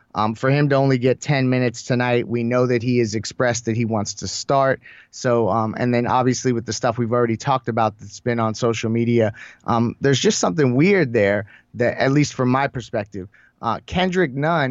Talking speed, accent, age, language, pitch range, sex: 210 wpm, American, 20-39, English, 115-140 Hz, male